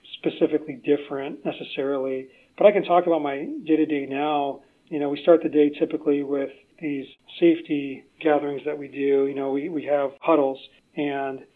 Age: 40-59